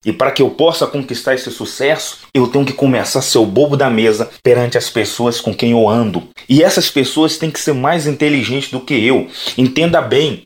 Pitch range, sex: 140-185 Hz, male